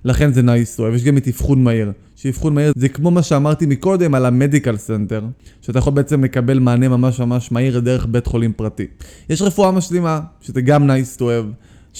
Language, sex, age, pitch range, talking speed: Hebrew, male, 20-39, 125-165 Hz, 200 wpm